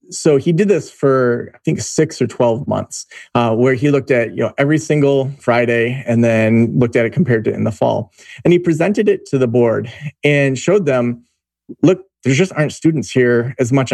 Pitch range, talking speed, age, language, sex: 120-155 Hz, 210 wpm, 30-49, English, male